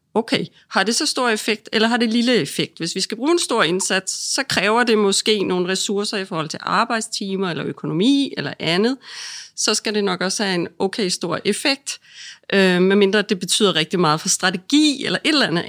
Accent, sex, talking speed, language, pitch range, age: native, female, 205 wpm, Danish, 185-240 Hz, 30-49